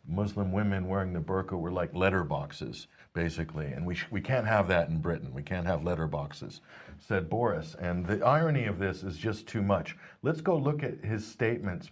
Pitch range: 85-125 Hz